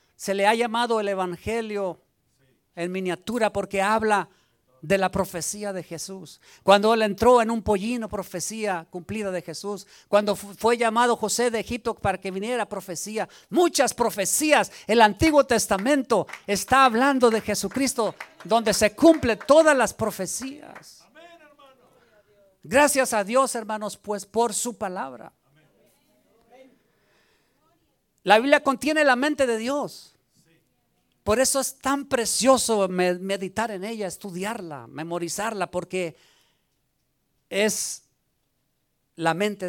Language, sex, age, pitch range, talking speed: Spanish, male, 50-69, 185-235 Hz, 120 wpm